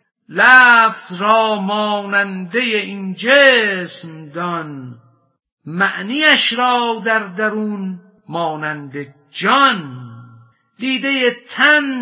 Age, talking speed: 50-69, 70 wpm